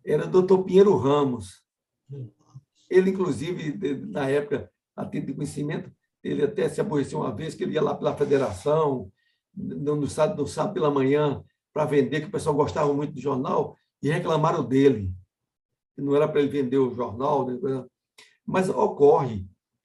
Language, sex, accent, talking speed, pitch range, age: Portuguese, male, Brazilian, 155 wpm, 135-185 Hz, 60-79